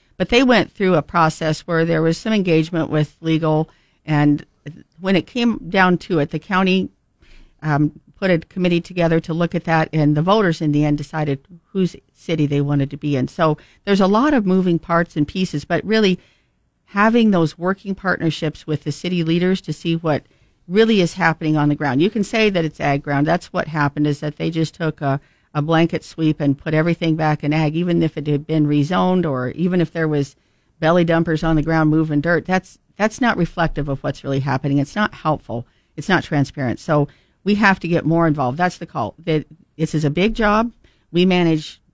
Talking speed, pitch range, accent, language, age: 210 wpm, 150-180 Hz, American, English, 50-69